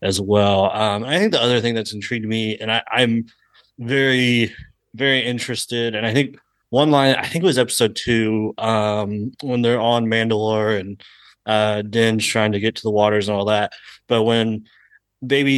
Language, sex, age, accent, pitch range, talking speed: English, male, 30-49, American, 105-125 Hz, 180 wpm